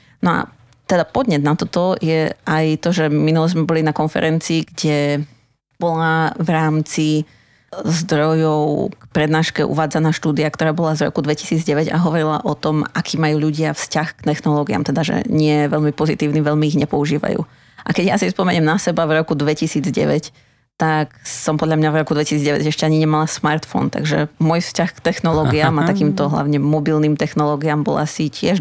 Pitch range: 150-165 Hz